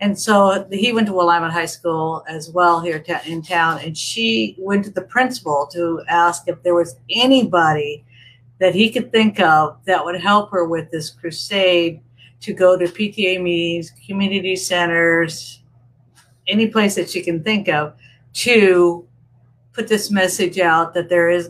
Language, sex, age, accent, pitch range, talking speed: English, female, 50-69, American, 150-185 Hz, 165 wpm